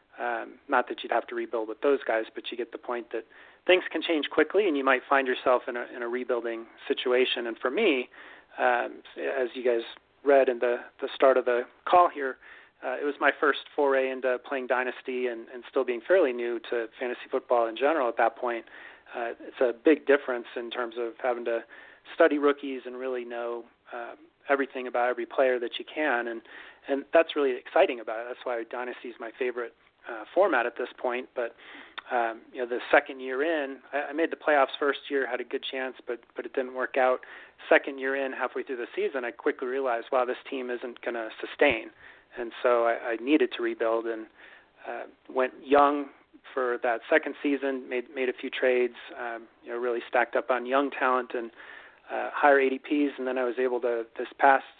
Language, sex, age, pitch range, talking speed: English, male, 30-49, 120-140 Hz, 210 wpm